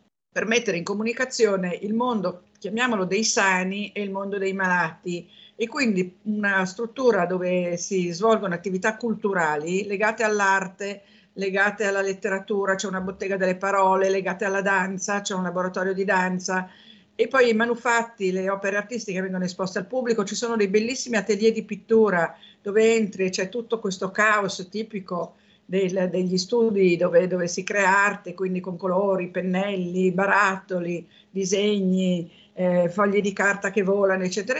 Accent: native